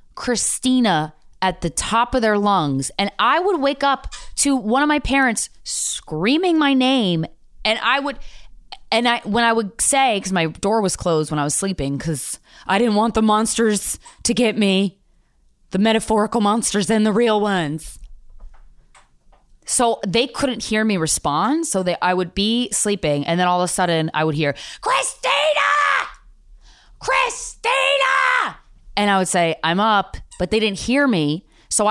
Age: 20-39